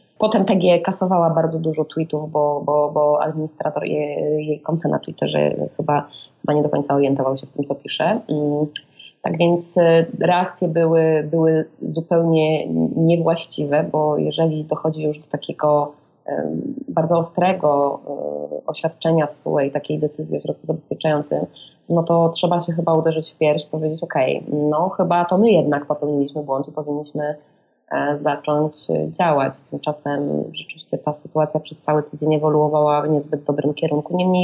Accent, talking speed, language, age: native, 145 wpm, Polish, 20-39